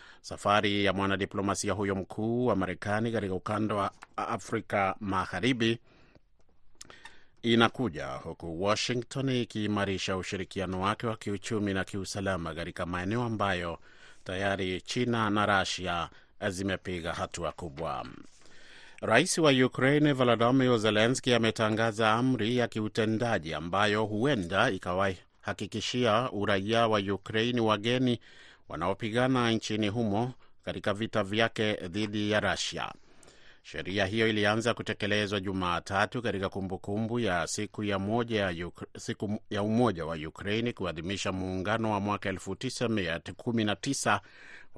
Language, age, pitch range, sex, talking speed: Swahili, 30-49, 95-115 Hz, male, 105 wpm